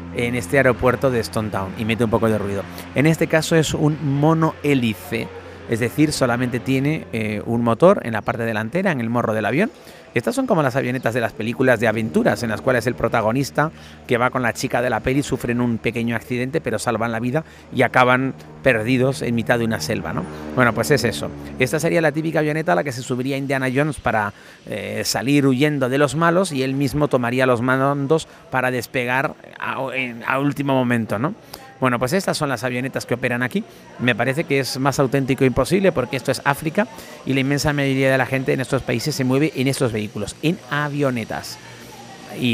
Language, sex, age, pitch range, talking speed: Spanish, male, 30-49, 115-145 Hz, 210 wpm